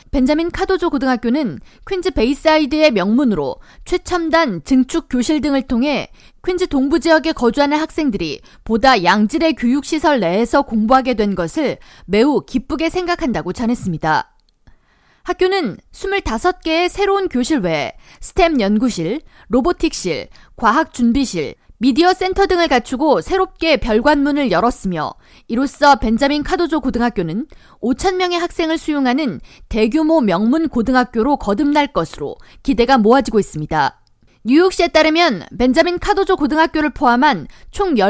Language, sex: Korean, female